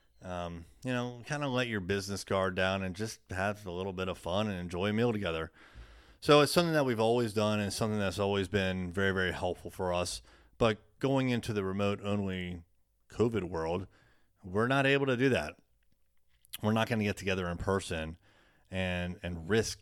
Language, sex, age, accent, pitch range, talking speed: English, male, 30-49, American, 85-115 Hz, 195 wpm